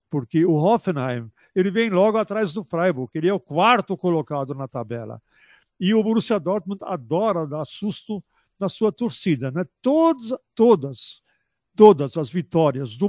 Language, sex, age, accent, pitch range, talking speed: Portuguese, male, 60-79, Brazilian, 150-200 Hz, 150 wpm